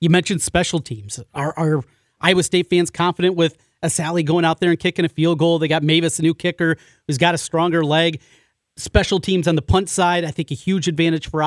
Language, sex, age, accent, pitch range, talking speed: English, male, 30-49, American, 165-195 Hz, 230 wpm